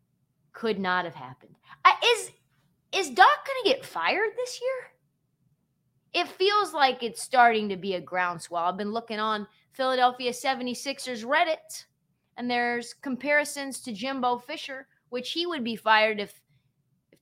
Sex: female